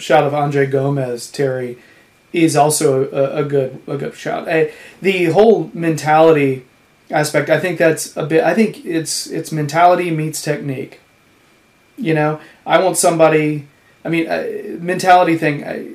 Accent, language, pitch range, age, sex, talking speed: American, English, 140-165 Hz, 30-49, male, 150 wpm